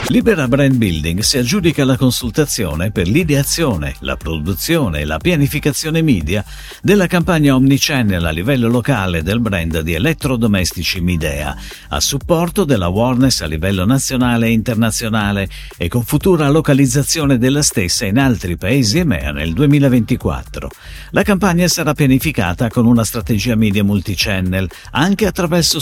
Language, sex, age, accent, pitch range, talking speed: Italian, male, 50-69, native, 95-150 Hz, 135 wpm